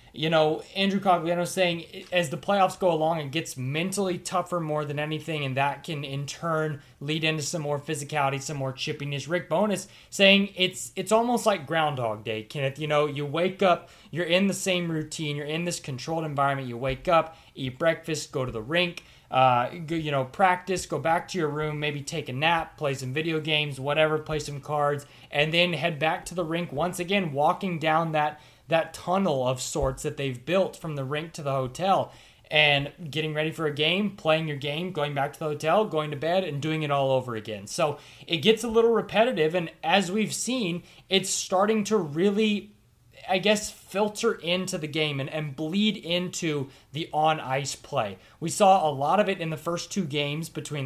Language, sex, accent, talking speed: English, male, American, 205 wpm